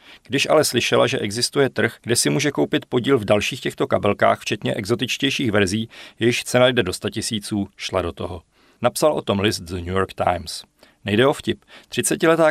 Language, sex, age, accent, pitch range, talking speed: Czech, male, 40-59, native, 105-130 Hz, 185 wpm